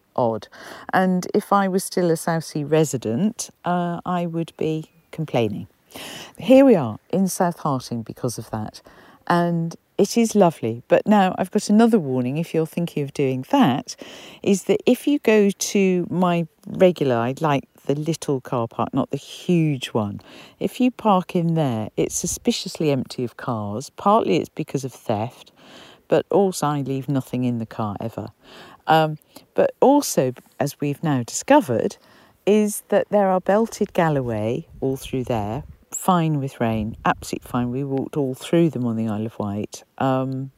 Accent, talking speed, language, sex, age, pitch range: British, 170 wpm, English, female, 50-69, 130-195 Hz